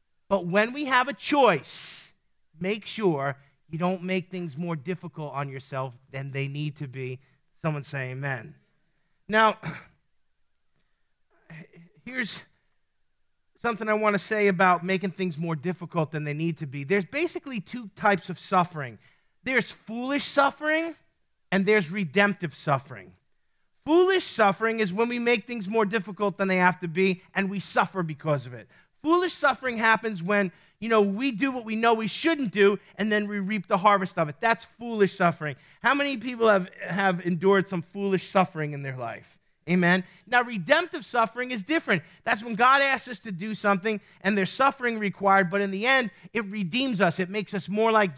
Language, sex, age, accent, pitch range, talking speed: English, male, 30-49, American, 170-235 Hz, 175 wpm